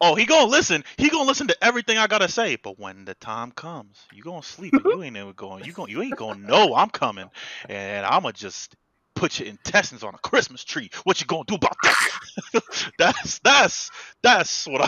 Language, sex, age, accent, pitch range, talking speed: English, male, 20-39, American, 115-160 Hz, 235 wpm